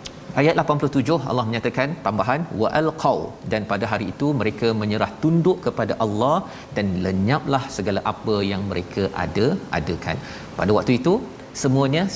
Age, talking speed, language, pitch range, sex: 40-59, 140 wpm, Malayalam, 110-145 Hz, male